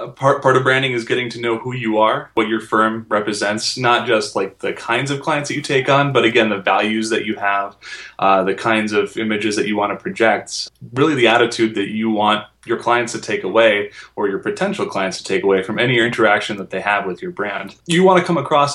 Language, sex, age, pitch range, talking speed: English, male, 20-39, 100-120 Hz, 240 wpm